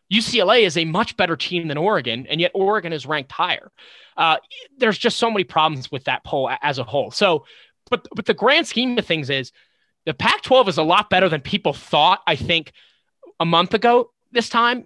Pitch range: 140-185 Hz